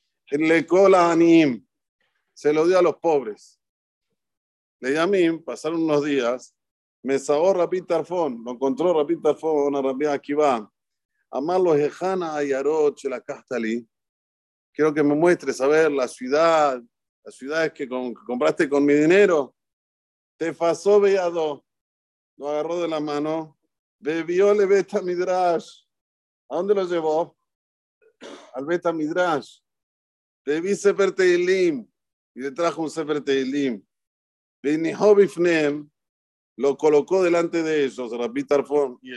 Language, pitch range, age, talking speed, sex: Spanish, 140-195 Hz, 50-69, 125 wpm, male